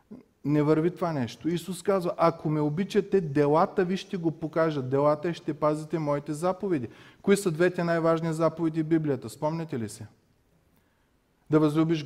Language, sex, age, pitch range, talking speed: Bulgarian, male, 30-49, 115-155 Hz, 160 wpm